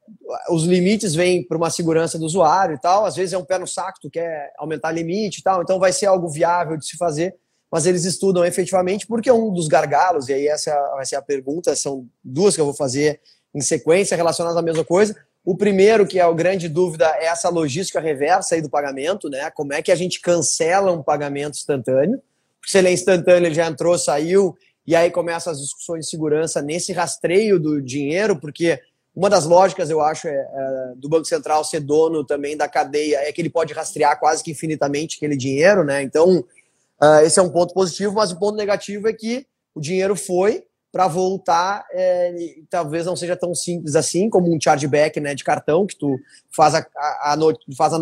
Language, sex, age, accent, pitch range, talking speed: Portuguese, male, 20-39, Brazilian, 150-180 Hz, 210 wpm